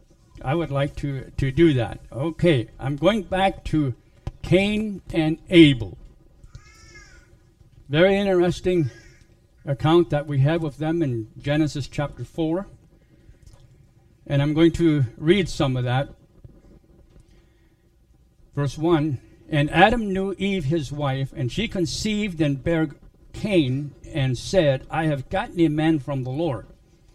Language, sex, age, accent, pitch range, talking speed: English, male, 60-79, American, 140-180 Hz, 130 wpm